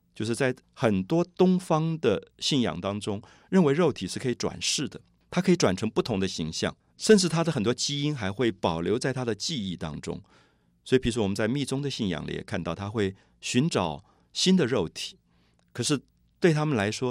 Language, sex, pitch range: Chinese, male, 90-130 Hz